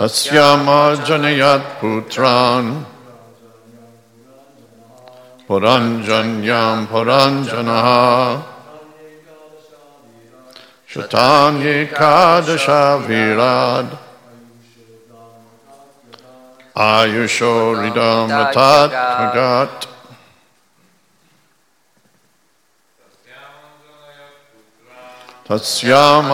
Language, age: Hungarian, 60-79